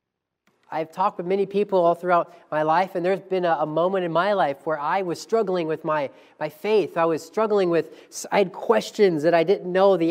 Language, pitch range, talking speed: English, 155-200 Hz, 225 wpm